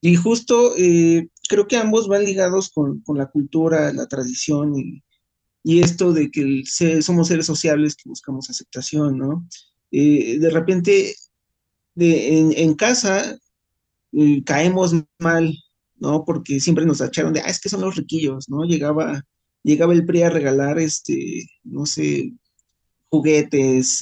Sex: male